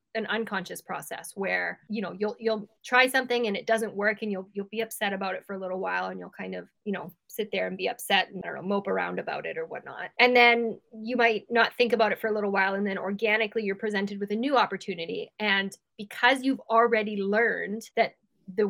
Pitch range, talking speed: 195-235 Hz, 240 wpm